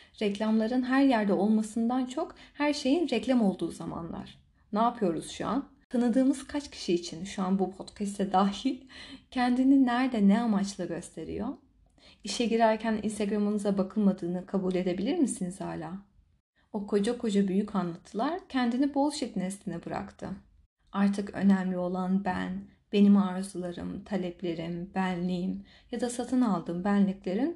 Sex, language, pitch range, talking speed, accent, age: female, Turkish, 185-240 Hz, 125 wpm, native, 30-49